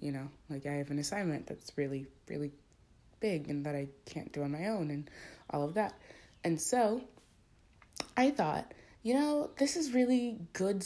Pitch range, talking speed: 155-215 Hz, 180 wpm